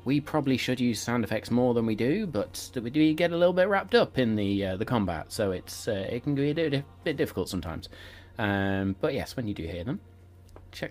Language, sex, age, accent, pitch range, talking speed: English, male, 30-49, British, 90-110 Hz, 235 wpm